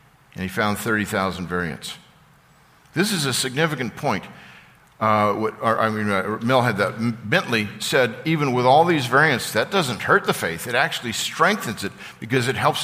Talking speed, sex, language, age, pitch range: 180 wpm, male, English, 50-69, 120-160 Hz